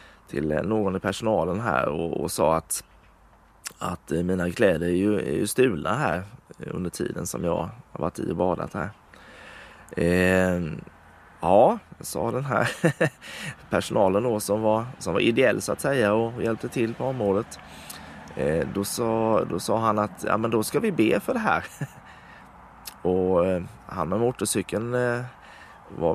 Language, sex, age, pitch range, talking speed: Swedish, male, 20-39, 100-120 Hz, 160 wpm